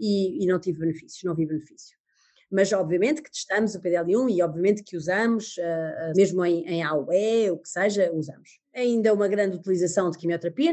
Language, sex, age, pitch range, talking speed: Portuguese, female, 20-39, 175-225 Hz, 190 wpm